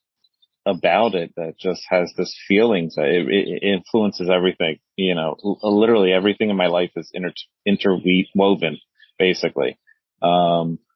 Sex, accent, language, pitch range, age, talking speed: male, American, English, 85-95 Hz, 30-49, 135 wpm